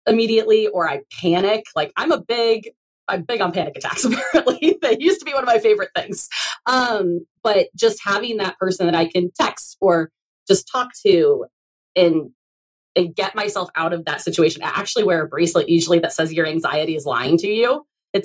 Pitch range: 170-225 Hz